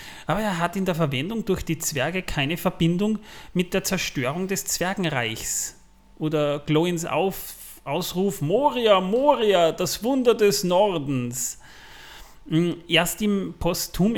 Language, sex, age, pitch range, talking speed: German, male, 30-49, 135-175 Hz, 120 wpm